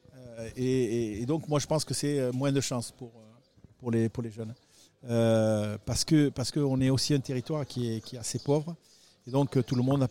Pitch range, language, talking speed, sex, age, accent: 115-145 Hz, French, 230 wpm, male, 50-69, French